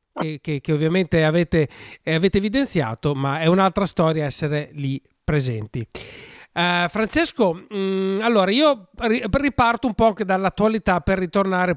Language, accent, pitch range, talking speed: Italian, native, 155-200 Hz, 140 wpm